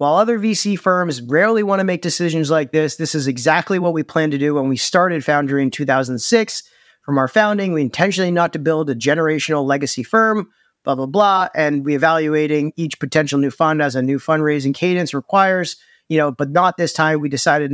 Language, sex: English, male